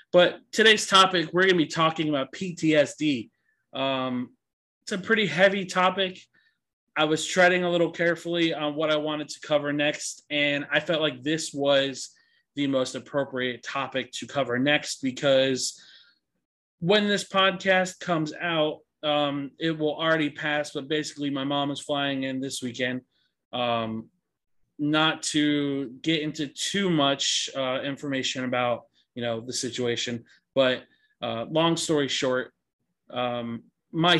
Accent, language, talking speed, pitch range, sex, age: American, English, 145 wpm, 130-165 Hz, male, 20-39